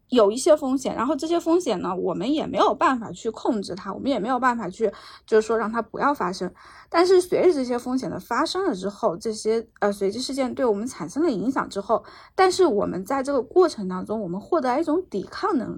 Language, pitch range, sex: Chinese, 205-310 Hz, female